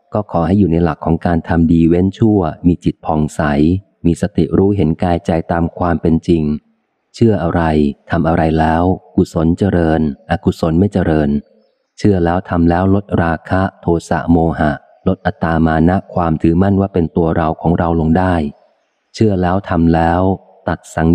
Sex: male